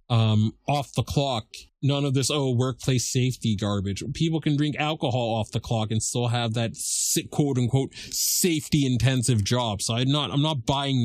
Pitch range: 115-140 Hz